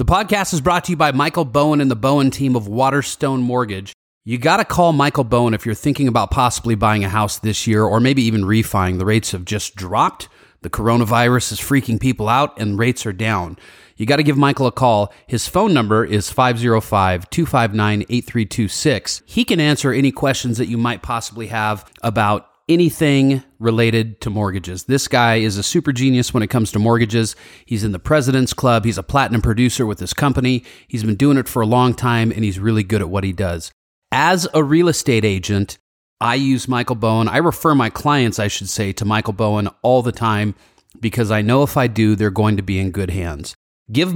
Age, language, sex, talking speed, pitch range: 30-49, English, male, 210 wpm, 105-135 Hz